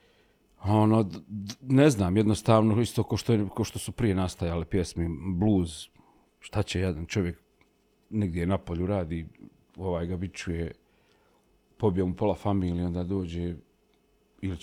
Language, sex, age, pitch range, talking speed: Croatian, male, 40-59, 90-125 Hz, 125 wpm